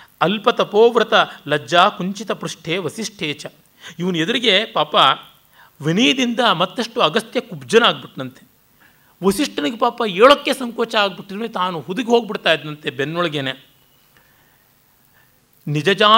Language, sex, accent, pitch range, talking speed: Kannada, male, native, 150-215 Hz, 95 wpm